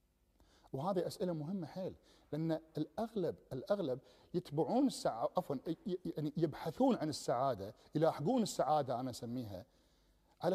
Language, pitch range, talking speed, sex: Arabic, 135-180 Hz, 110 wpm, male